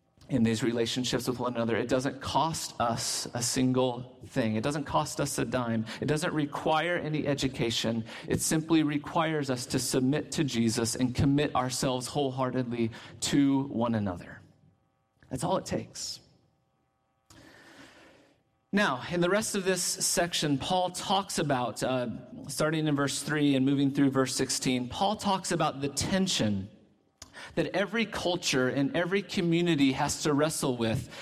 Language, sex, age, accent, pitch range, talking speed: English, male, 40-59, American, 130-190 Hz, 150 wpm